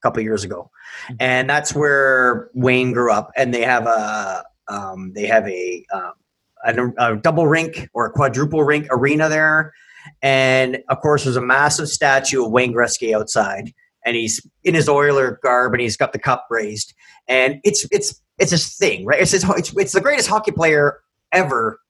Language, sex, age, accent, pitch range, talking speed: English, male, 30-49, American, 125-155 Hz, 185 wpm